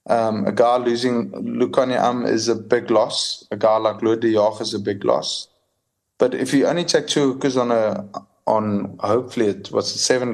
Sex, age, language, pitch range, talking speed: male, 20-39, English, 105-125 Hz, 185 wpm